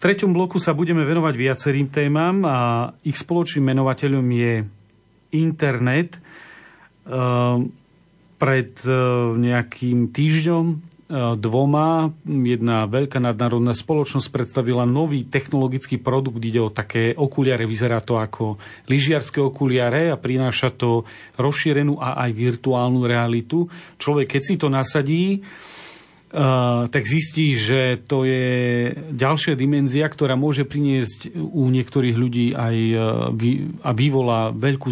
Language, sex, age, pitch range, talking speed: Slovak, male, 40-59, 125-155 Hz, 115 wpm